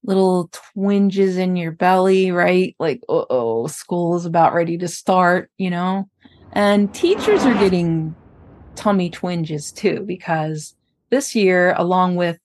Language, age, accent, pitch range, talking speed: English, 30-49, American, 170-220 Hz, 140 wpm